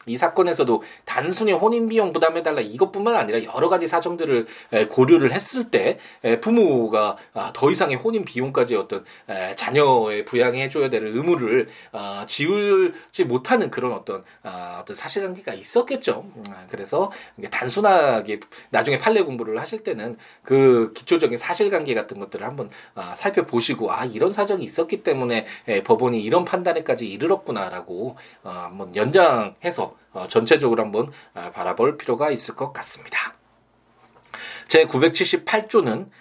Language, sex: Korean, male